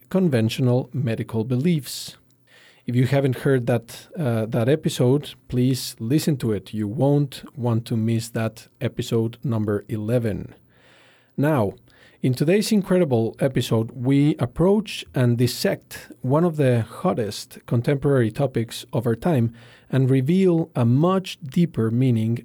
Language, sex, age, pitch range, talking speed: English, male, 40-59, 120-150 Hz, 130 wpm